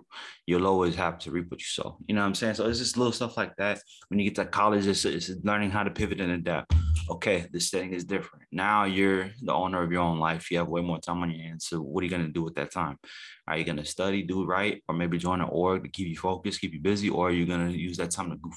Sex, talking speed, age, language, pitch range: male, 295 wpm, 20-39, English, 80-95 Hz